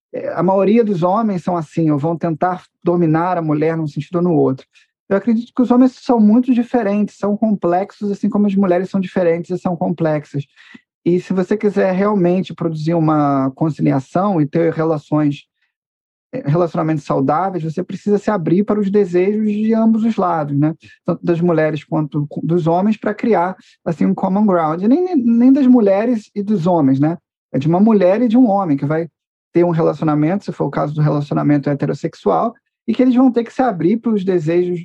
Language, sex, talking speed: Portuguese, male, 195 wpm